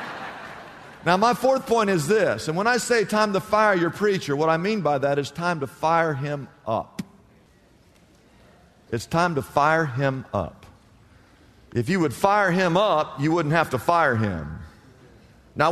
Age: 50-69